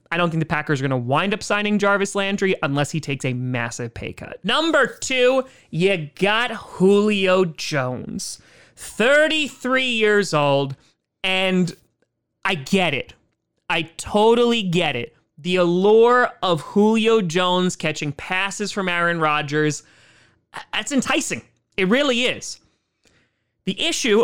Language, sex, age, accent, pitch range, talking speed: English, male, 30-49, American, 155-210 Hz, 135 wpm